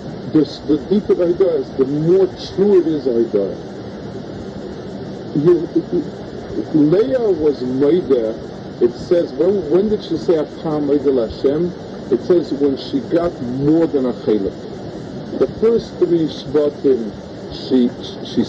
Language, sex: English, male